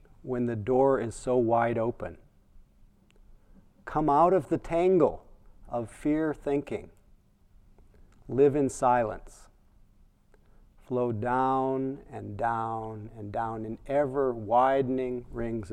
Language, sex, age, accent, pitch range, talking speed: English, male, 40-59, American, 105-130 Hz, 105 wpm